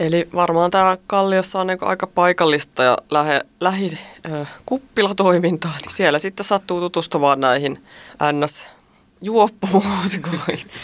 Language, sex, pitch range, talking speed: Finnish, female, 150-195 Hz, 105 wpm